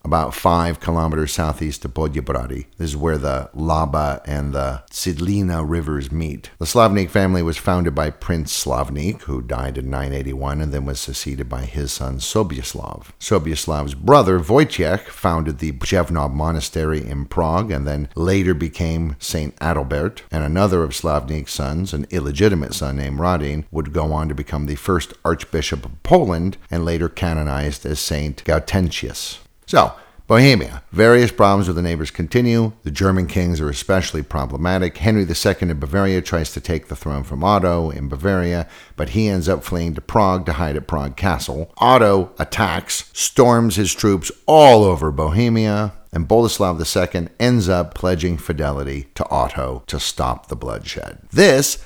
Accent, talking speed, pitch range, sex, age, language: American, 160 wpm, 75-95 Hz, male, 50-69, English